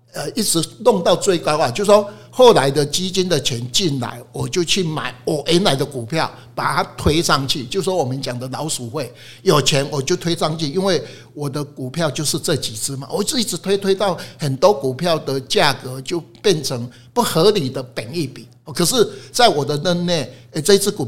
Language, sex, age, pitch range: Chinese, male, 60-79, 130-170 Hz